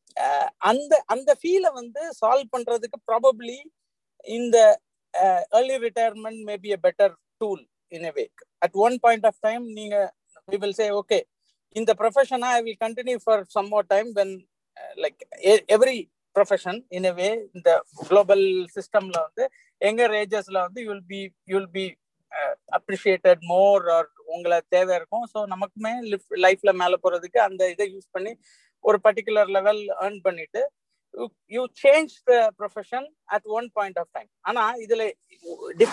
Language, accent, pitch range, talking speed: Tamil, native, 195-275 Hz, 35 wpm